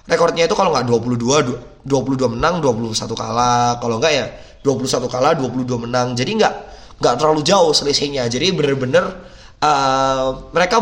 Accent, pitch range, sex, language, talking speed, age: native, 125-160 Hz, male, Indonesian, 140 wpm, 20-39